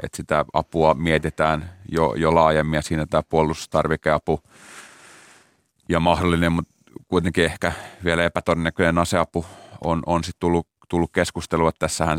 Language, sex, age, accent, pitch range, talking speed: Finnish, male, 30-49, native, 75-85 Hz, 120 wpm